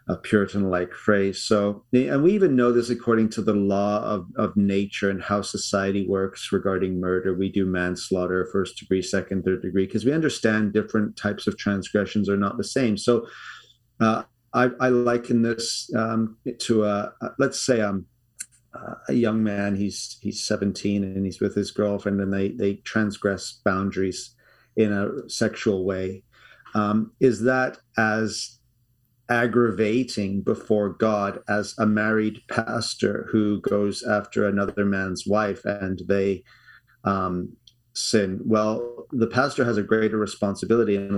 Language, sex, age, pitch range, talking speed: English, male, 40-59, 100-120 Hz, 150 wpm